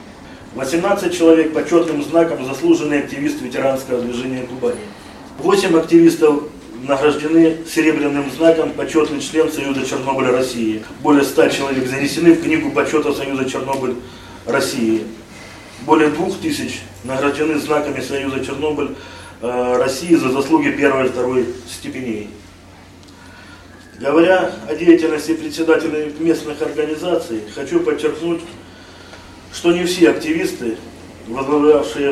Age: 20-39